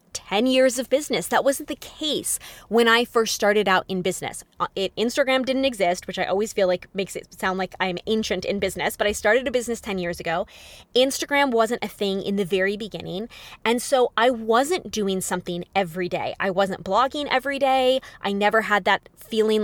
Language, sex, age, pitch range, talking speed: English, female, 20-39, 190-255 Hz, 200 wpm